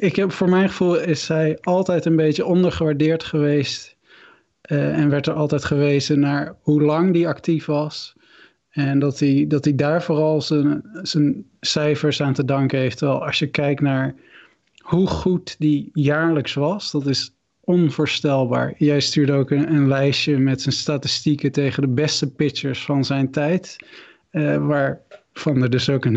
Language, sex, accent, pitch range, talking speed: Dutch, male, Dutch, 140-155 Hz, 165 wpm